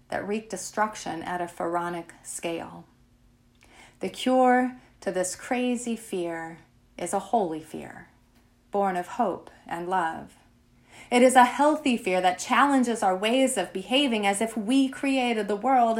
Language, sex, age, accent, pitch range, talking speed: English, female, 30-49, American, 180-250 Hz, 145 wpm